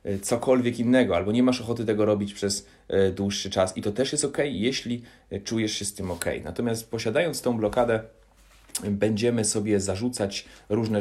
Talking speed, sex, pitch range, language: 165 wpm, male, 95-115 Hz, Polish